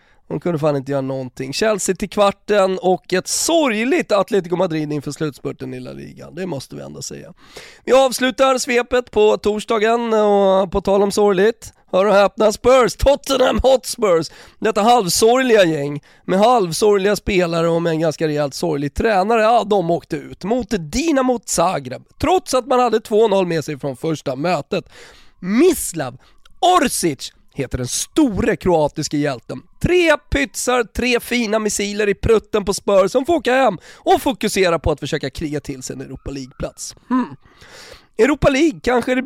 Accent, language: native, Swedish